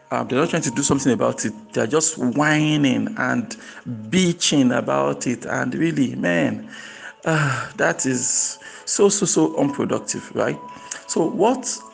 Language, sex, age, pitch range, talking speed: English, male, 50-69, 120-160 Hz, 145 wpm